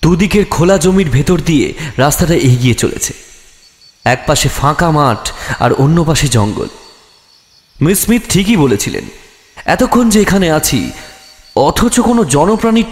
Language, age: Bengali, 30-49